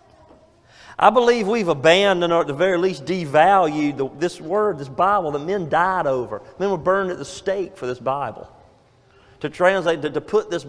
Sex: male